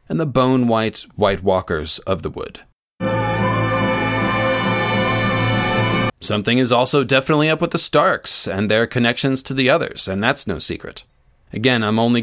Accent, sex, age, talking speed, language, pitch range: American, male, 20-39, 145 wpm, English, 105-130 Hz